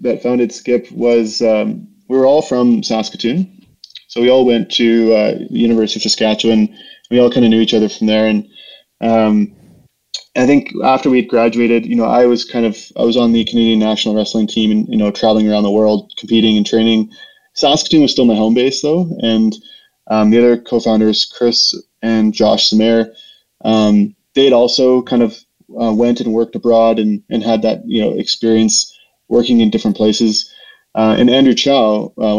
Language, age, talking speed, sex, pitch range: English, 20-39, 185 wpm, male, 110-125 Hz